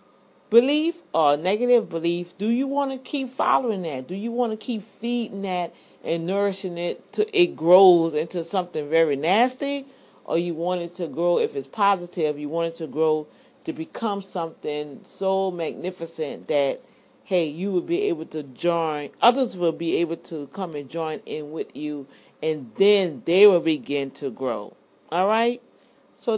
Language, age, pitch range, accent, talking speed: English, 40-59, 155-210 Hz, American, 170 wpm